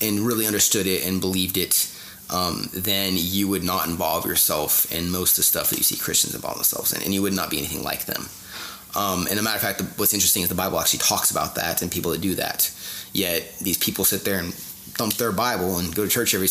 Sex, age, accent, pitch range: male, 20-39, American, 95-115 Hz